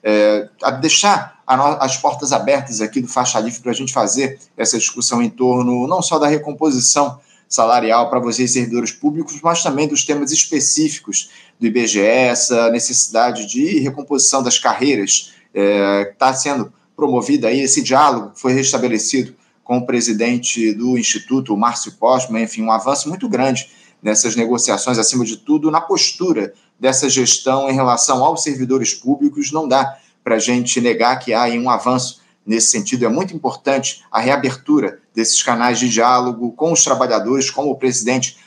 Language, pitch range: Portuguese, 120-140 Hz